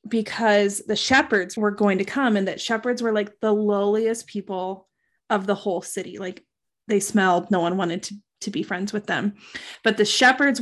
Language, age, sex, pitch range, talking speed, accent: English, 20-39, female, 205-245 Hz, 190 wpm, American